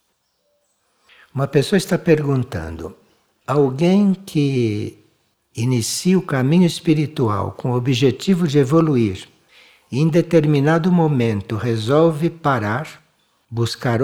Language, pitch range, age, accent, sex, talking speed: Portuguese, 115-160 Hz, 60-79, Brazilian, male, 95 wpm